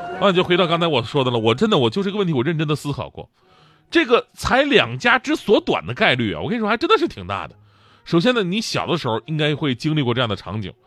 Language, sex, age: Chinese, male, 30-49